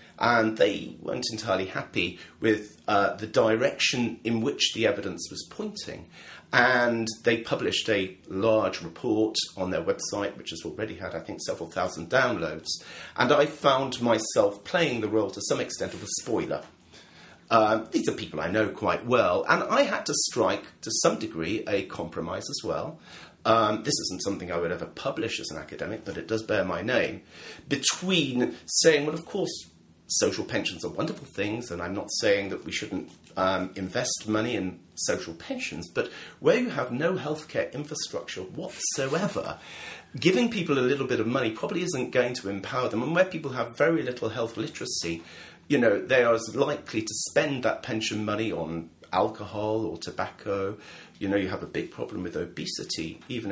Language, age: English, 30-49